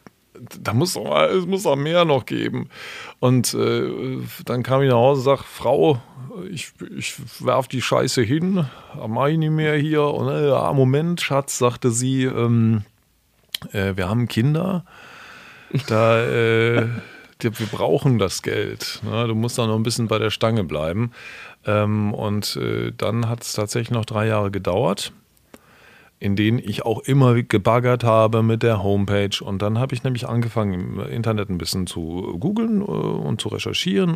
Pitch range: 105-130 Hz